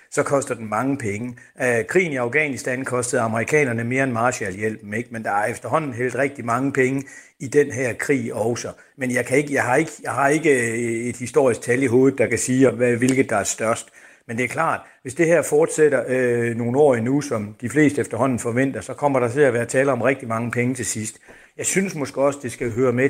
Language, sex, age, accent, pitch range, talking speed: Danish, male, 60-79, native, 120-145 Hz, 225 wpm